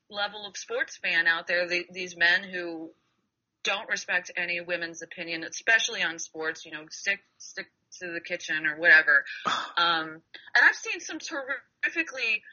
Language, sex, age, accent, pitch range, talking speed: English, female, 30-49, American, 175-240 Hz, 155 wpm